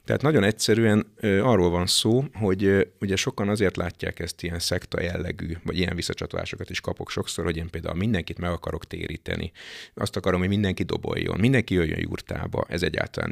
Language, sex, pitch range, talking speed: Hungarian, male, 85-100 Hz, 180 wpm